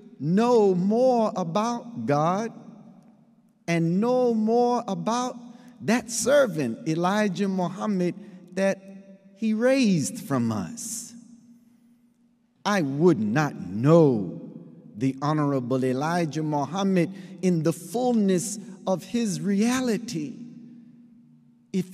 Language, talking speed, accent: English, 90 wpm, American